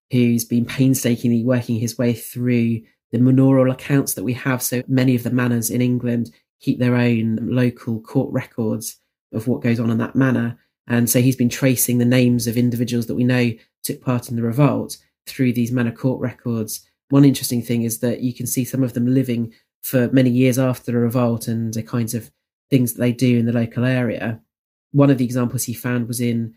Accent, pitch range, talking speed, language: British, 120-130 Hz, 210 wpm, English